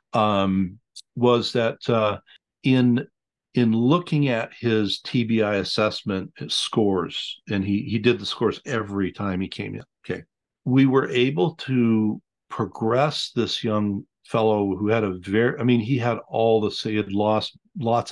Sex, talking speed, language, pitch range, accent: male, 155 wpm, English, 105-120 Hz, American